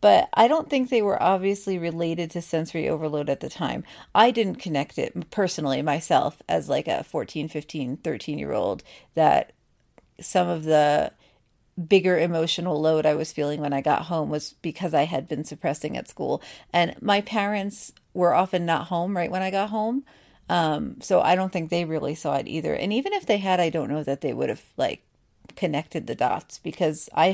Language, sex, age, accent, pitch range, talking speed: English, female, 40-59, American, 165-220 Hz, 200 wpm